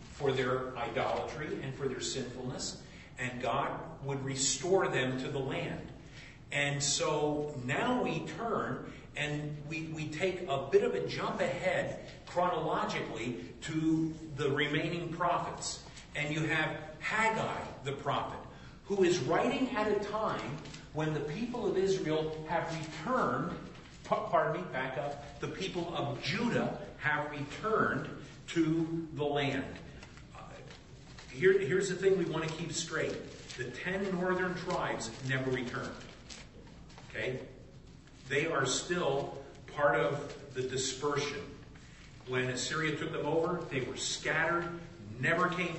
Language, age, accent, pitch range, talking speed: Italian, 50-69, American, 135-170 Hz, 130 wpm